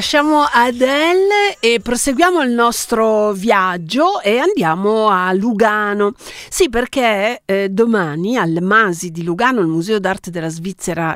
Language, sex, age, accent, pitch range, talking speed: Italian, female, 50-69, native, 190-255 Hz, 130 wpm